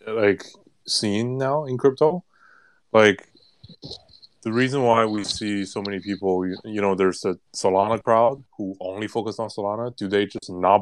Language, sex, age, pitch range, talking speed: English, male, 20-39, 95-125 Hz, 165 wpm